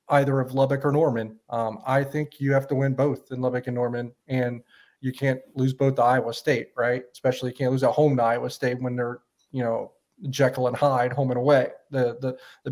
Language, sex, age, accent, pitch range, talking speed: English, male, 30-49, American, 125-145 Hz, 225 wpm